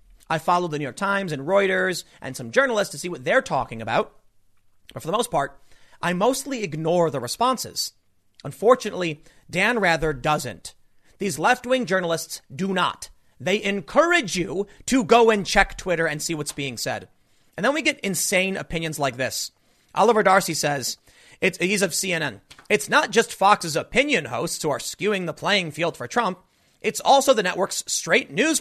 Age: 30-49